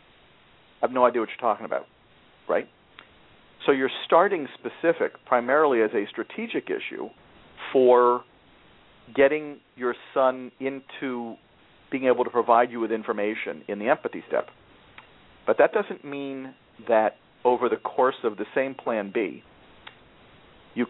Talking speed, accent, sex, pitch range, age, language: 140 wpm, American, male, 115-135 Hz, 50-69, English